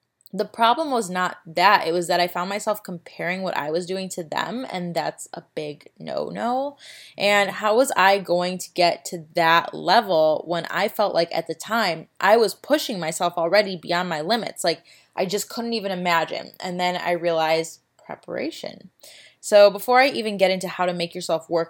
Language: English